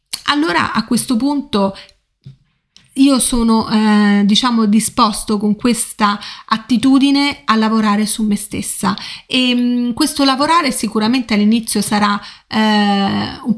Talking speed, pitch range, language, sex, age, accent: 110 wpm, 210-235 Hz, Italian, female, 30-49, native